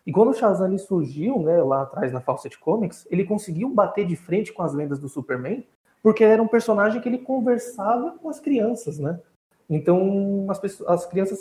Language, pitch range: Portuguese, 155-220 Hz